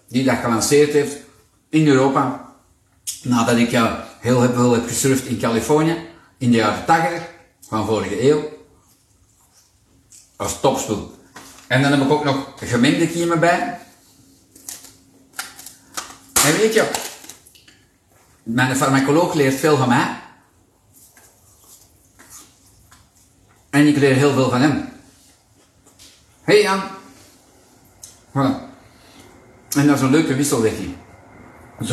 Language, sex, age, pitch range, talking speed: Dutch, male, 50-69, 110-145 Hz, 110 wpm